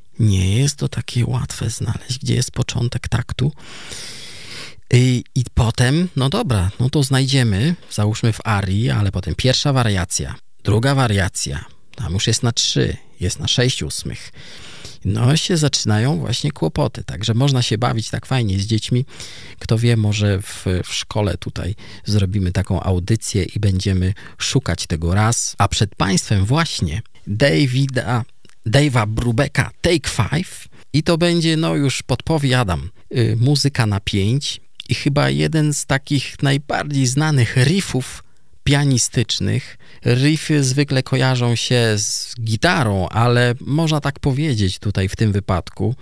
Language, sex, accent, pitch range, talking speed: Polish, male, native, 105-135 Hz, 140 wpm